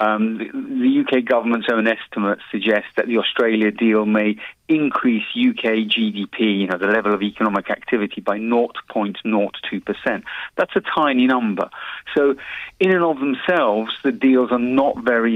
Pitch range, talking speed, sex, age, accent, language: 110-135 Hz, 155 wpm, male, 40-59, British, English